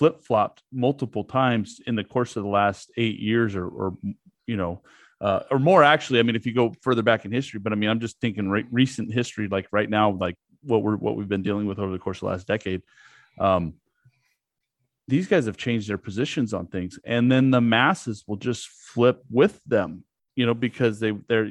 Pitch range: 100-125 Hz